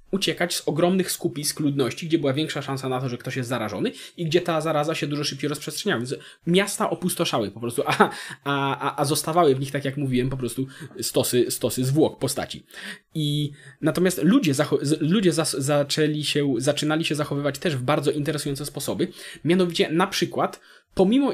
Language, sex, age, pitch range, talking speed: Polish, male, 20-39, 140-180 Hz, 175 wpm